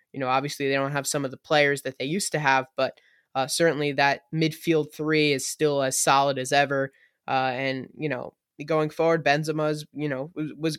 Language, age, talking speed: English, 10-29, 210 wpm